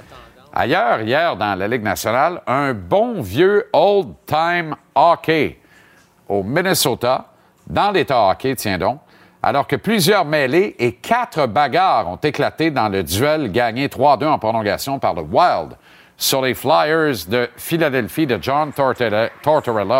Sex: male